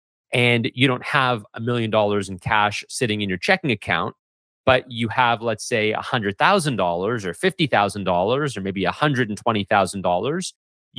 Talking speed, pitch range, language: 135 wpm, 110-145 Hz, English